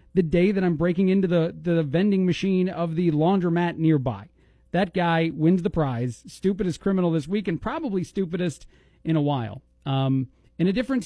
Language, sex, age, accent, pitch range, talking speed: English, male, 40-59, American, 145-175 Hz, 180 wpm